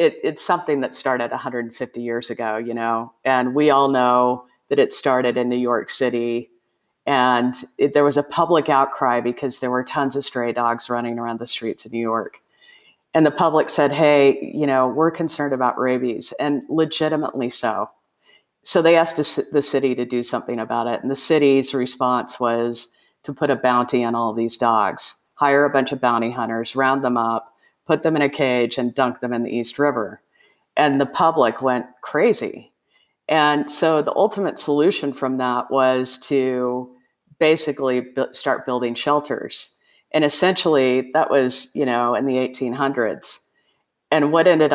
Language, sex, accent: English, female, American